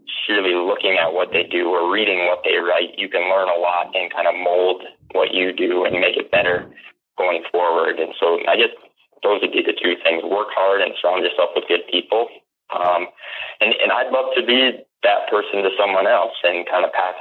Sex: male